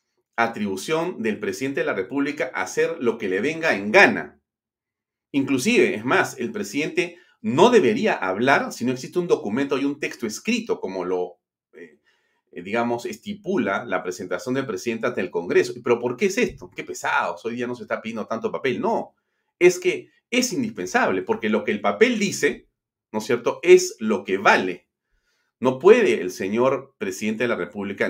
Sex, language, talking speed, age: male, Spanish, 180 wpm, 40-59